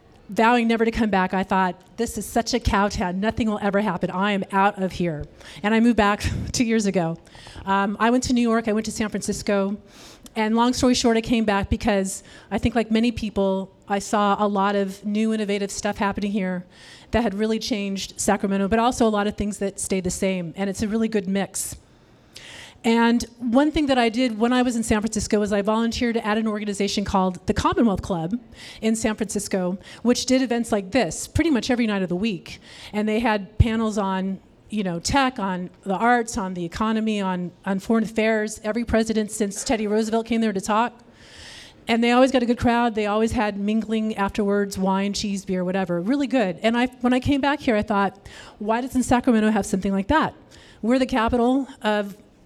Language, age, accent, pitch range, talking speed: English, 40-59, American, 200-235 Hz, 215 wpm